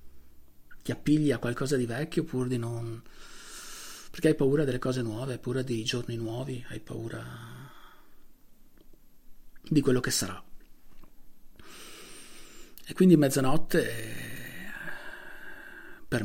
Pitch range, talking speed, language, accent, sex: 120-145 Hz, 110 wpm, Italian, native, male